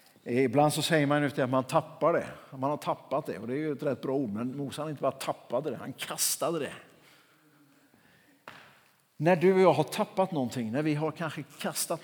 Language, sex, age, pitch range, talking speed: Swedish, male, 60-79, 125-160 Hz, 210 wpm